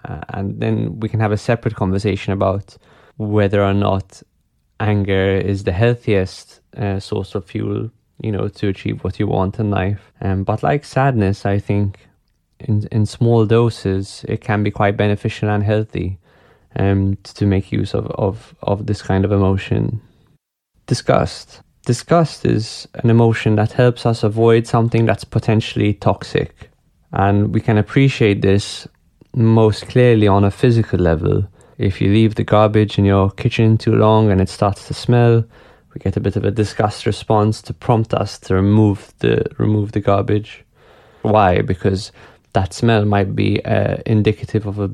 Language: English